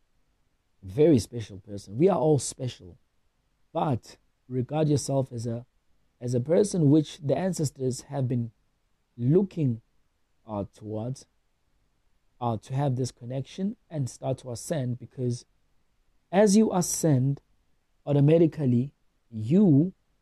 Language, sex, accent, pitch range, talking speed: English, male, South African, 100-145 Hz, 115 wpm